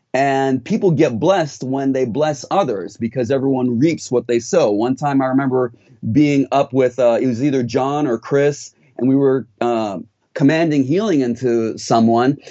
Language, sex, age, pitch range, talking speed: English, male, 30-49, 125-160 Hz, 175 wpm